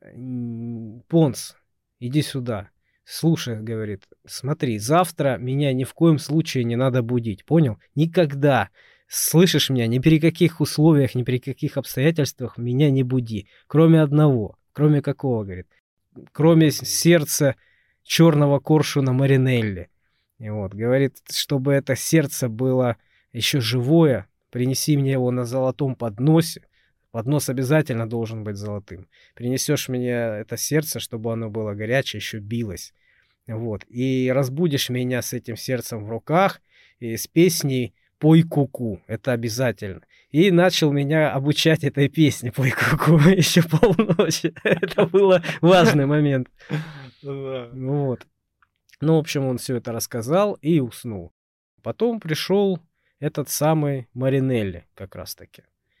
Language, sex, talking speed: Russian, male, 120 wpm